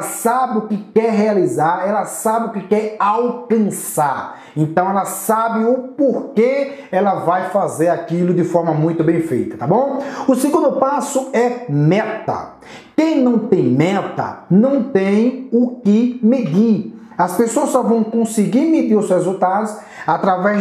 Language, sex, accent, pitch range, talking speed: Portuguese, male, Brazilian, 180-240 Hz, 145 wpm